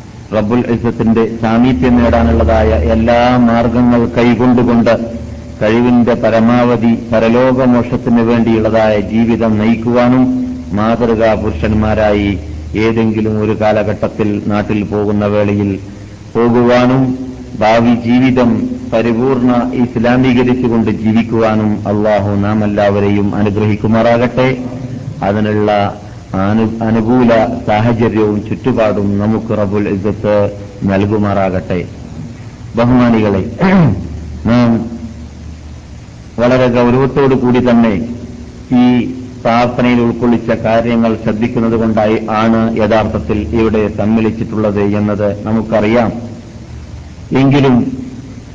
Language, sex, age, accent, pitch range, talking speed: Malayalam, male, 50-69, native, 105-120 Hz, 70 wpm